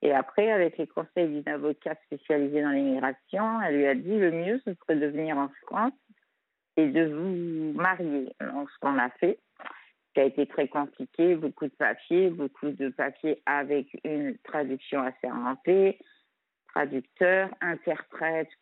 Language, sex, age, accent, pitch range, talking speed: French, female, 50-69, French, 145-180 Hz, 160 wpm